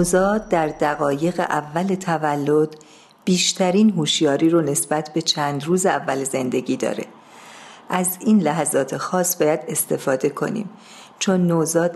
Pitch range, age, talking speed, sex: 160-195 Hz, 50-69, 120 wpm, female